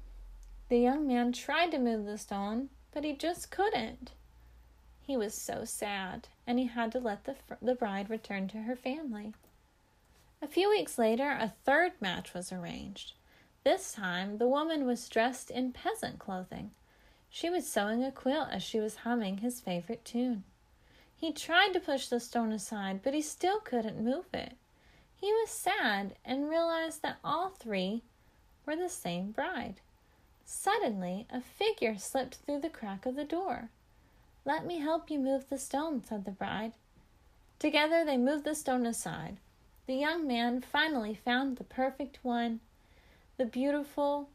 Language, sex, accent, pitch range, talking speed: English, female, American, 220-290 Hz, 160 wpm